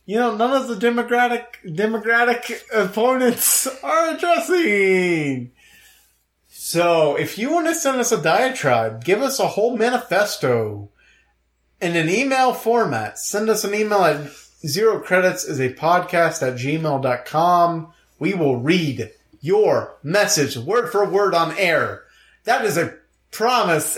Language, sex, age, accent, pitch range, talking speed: English, male, 30-49, American, 155-245 Hz, 135 wpm